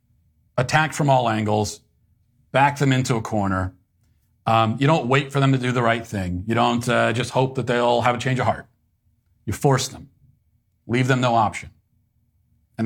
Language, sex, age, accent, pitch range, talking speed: English, male, 40-59, American, 105-130 Hz, 185 wpm